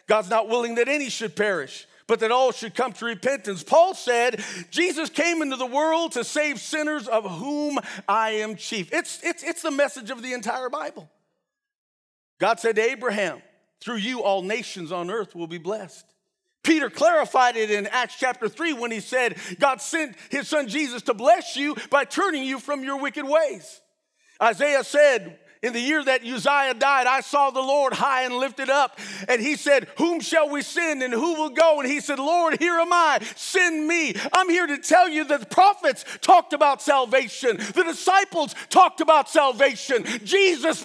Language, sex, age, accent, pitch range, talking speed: English, male, 40-59, American, 250-335 Hz, 190 wpm